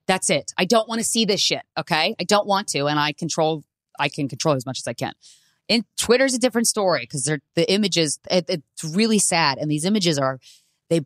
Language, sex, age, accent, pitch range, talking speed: English, female, 20-39, American, 150-205 Hz, 230 wpm